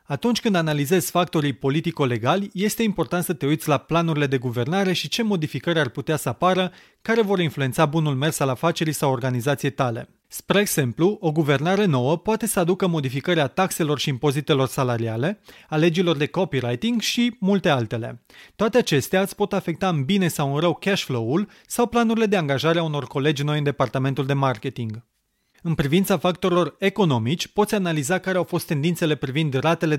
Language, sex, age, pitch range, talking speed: Romanian, male, 30-49, 140-185 Hz, 175 wpm